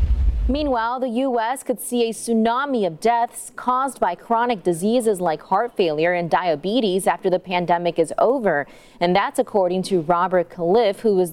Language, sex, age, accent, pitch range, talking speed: English, female, 20-39, American, 180-240 Hz, 165 wpm